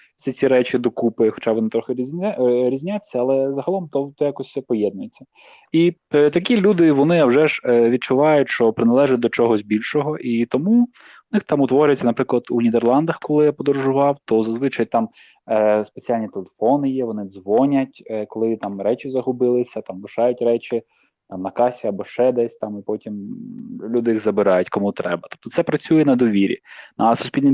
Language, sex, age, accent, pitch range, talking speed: Ukrainian, male, 20-39, native, 115-145 Hz, 170 wpm